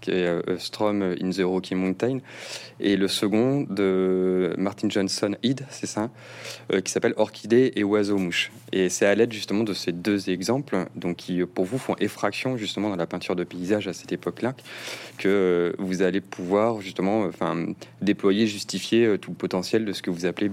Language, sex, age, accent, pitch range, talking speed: French, male, 30-49, French, 95-110 Hz, 185 wpm